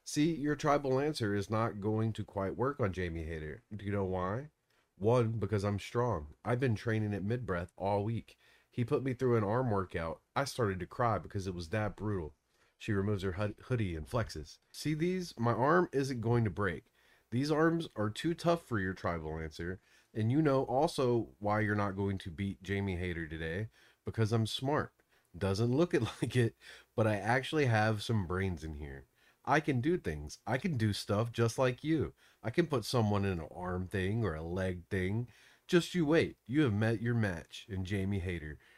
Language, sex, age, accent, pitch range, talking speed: English, male, 30-49, American, 95-125 Hz, 200 wpm